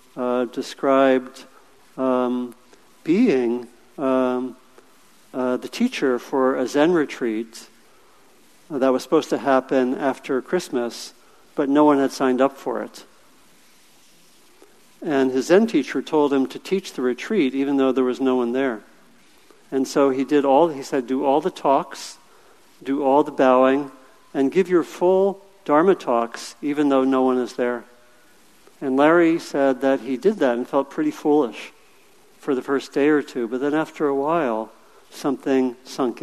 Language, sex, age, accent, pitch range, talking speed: English, male, 50-69, American, 125-140 Hz, 155 wpm